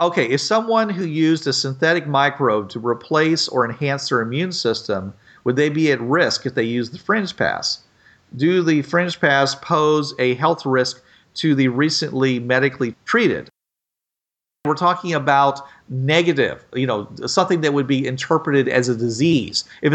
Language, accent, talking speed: English, American, 160 wpm